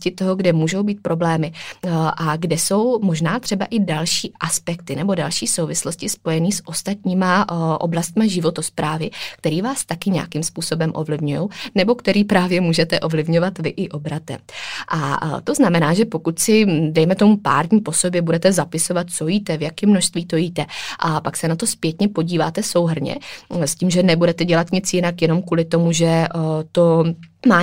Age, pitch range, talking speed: 20-39, 165-190 Hz, 165 wpm